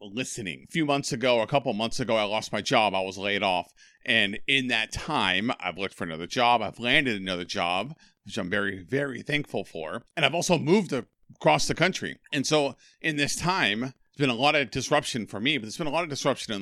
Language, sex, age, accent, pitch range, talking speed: English, male, 40-59, American, 105-135 Hz, 235 wpm